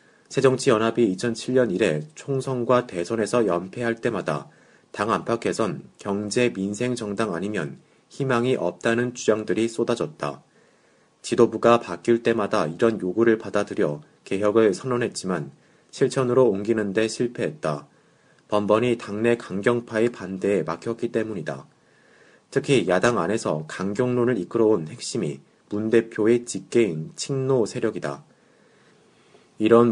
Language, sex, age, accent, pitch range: Korean, male, 30-49, native, 100-120 Hz